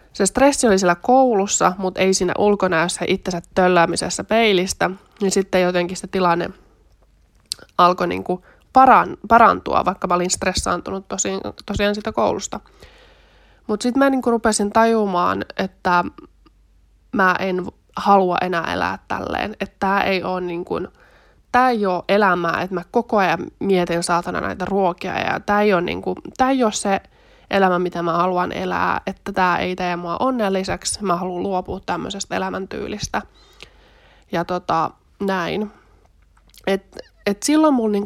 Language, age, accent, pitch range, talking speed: Finnish, 20-39, native, 175-205 Hz, 140 wpm